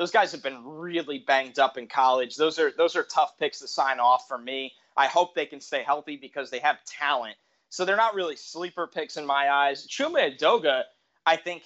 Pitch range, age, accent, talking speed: 140-210 Hz, 20-39, American, 220 wpm